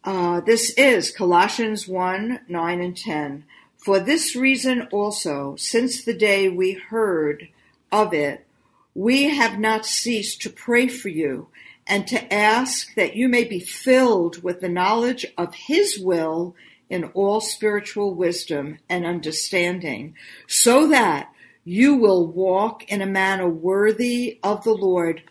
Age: 50-69